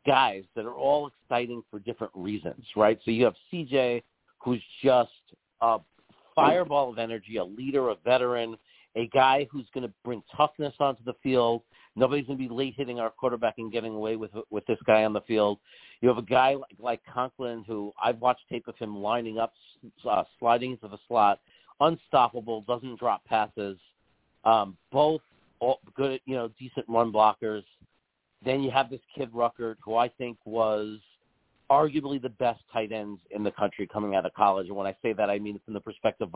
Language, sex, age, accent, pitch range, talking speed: English, male, 50-69, American, 105-130 Hz, 190 wpm